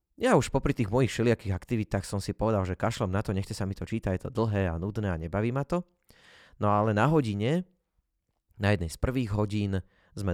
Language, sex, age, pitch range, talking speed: Slovak, male, 20-39, 95-115 Hz, 220 wpm